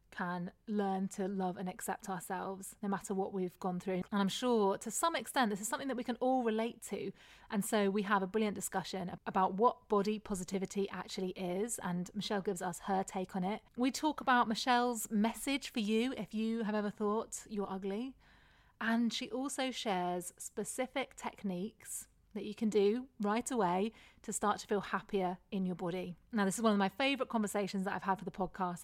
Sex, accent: female, British